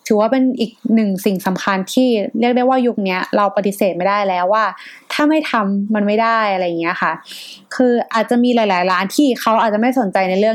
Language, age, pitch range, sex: Thai, 20-39, 190-240 Hz, female